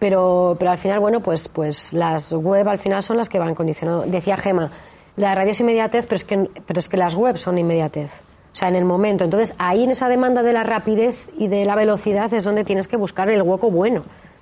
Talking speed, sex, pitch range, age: 235 wpm, female, 185-235 Hz, 20-39